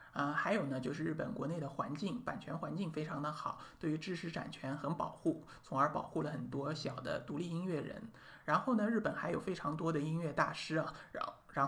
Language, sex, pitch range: Chinese, male, 150-190 Hz